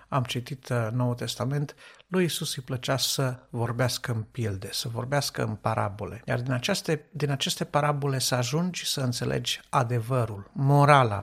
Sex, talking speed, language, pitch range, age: male, 150 wpm, Romanian, 120-165 Hz, 60-79